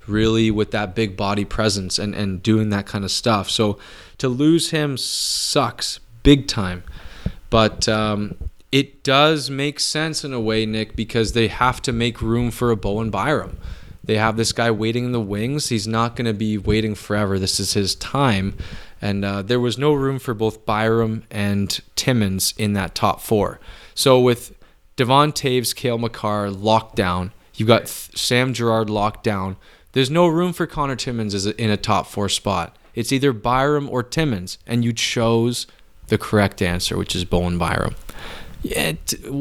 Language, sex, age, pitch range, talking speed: English, male, 20-39, 100-135 Hz, 175 wpm